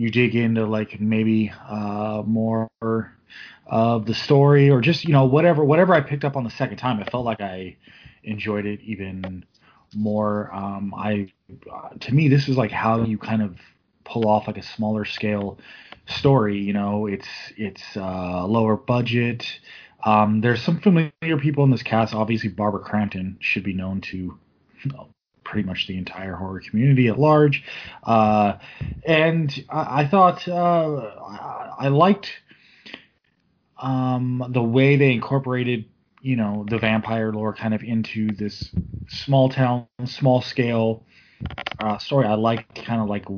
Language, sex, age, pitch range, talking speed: English, male, 20-39, 105-125 Hz, 155 wpm